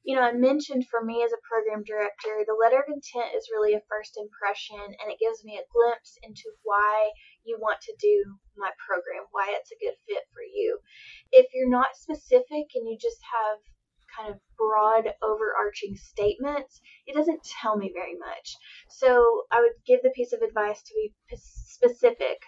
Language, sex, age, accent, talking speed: English, female, 20-39, American, 185 wpm